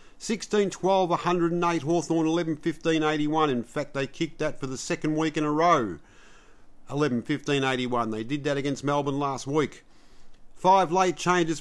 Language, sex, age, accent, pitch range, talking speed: English, male, 50-69, Australian, 140-170 Hz, 135 wpm